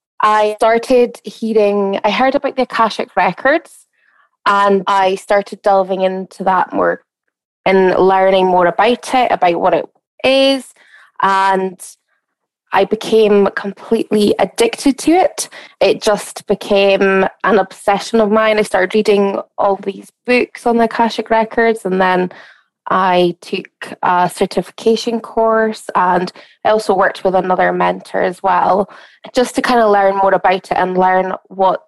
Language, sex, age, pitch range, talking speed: English, female, 20-39, 190-225 Hz, 145 wpm